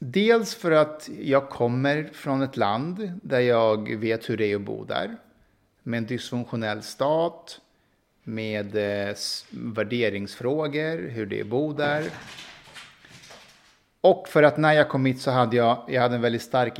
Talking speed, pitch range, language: 155 wpm, 115-145 Hz, Danish